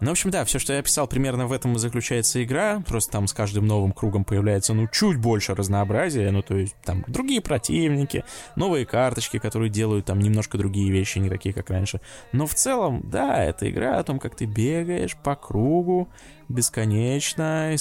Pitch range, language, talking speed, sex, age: 105-130 Hz, Russian, 195 wpm, male, 20-39